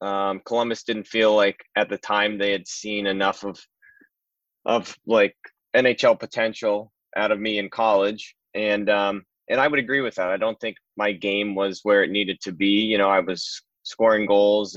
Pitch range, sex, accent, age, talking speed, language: 95-105 Hz, male, American, 20-39, 190 wpm, English